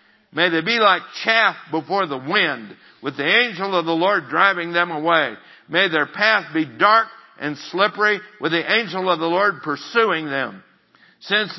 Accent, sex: American, male